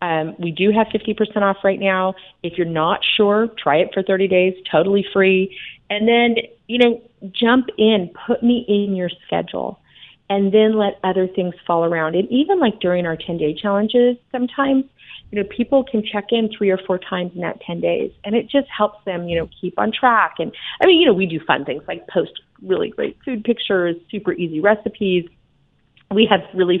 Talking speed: 205 wpm